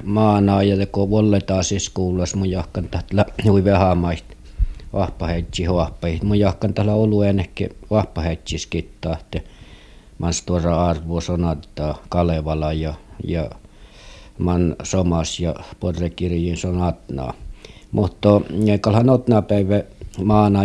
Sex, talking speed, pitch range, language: male, 100 wpm, 80-100 Hz, Finnish